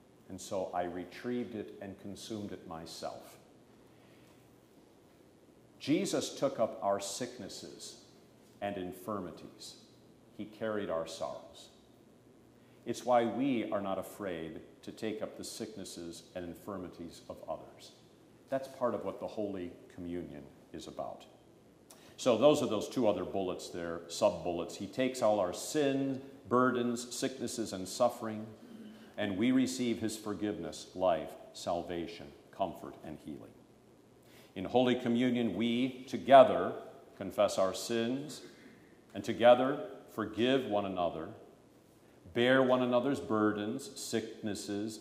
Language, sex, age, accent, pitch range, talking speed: English, male, 50-69, American, 95-120 Hz, 120 wpm